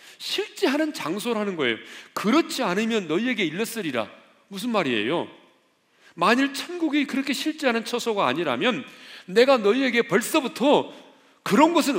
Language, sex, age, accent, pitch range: Korean, male, 40-59, native, 160-255 Hz